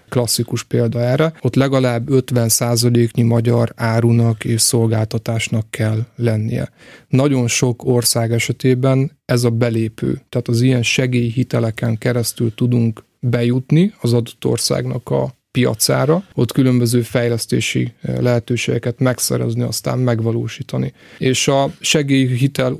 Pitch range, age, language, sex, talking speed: 115-125 Hz, 30-49, Hungarian, male, 110 wpm